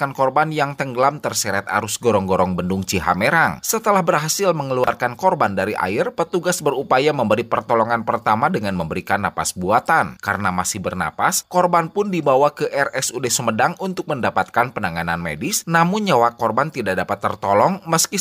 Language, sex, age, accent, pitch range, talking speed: Indonesian, male, 30-49, native, 105-165 Hz, 140 wpm